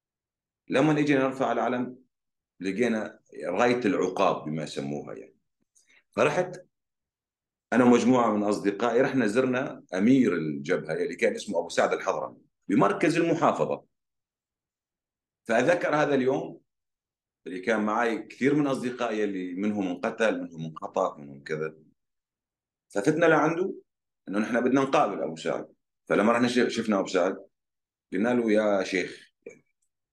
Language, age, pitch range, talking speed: Arabic, 40-59, 100-145 Hz, 120 wpm